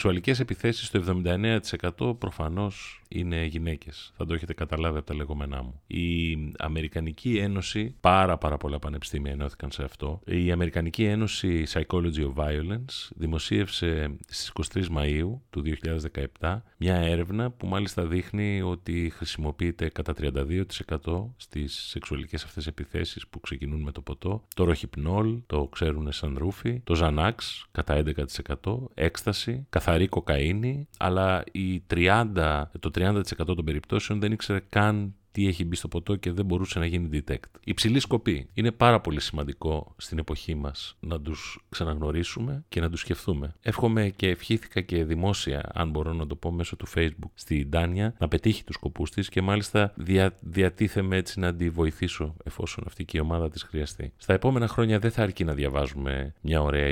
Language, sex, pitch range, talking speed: Greek, male, 75-100 Hz, 155 wpm